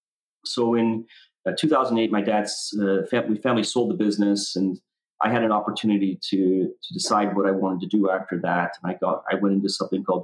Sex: male